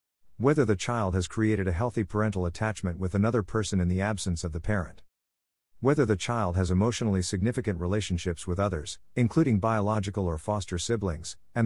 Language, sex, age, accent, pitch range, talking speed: English, male, 50-69, American, 90-110 Hz, 170 wpm